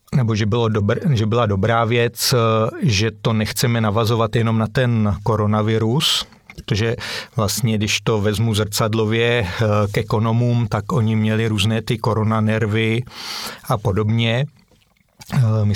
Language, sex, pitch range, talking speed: Czech, male, 110-120 Hz, 120 wpm